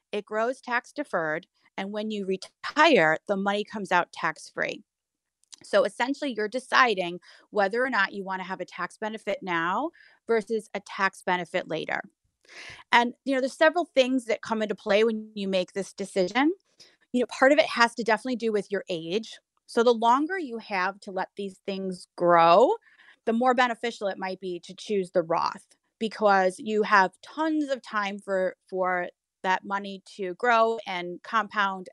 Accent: American